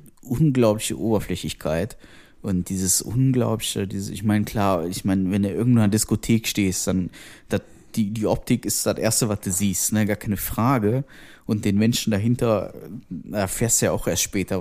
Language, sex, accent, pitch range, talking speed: German, male, German, 95-110 Hz, 175 wpm